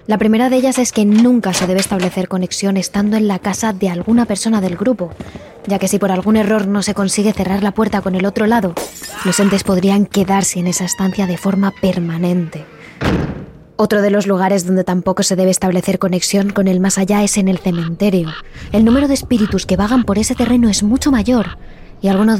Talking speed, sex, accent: 210 wpm, female, Spanish